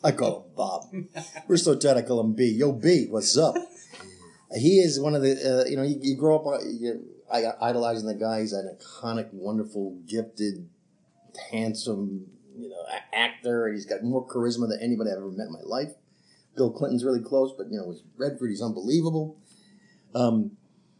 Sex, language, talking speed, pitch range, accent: male, English, 185 wpm, 110-135 Hz, American